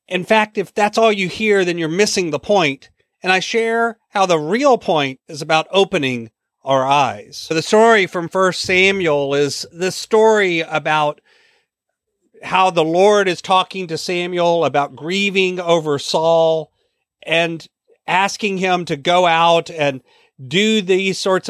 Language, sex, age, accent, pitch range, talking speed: English, male, 40-59, American, 160-200 Hz, 150 wpm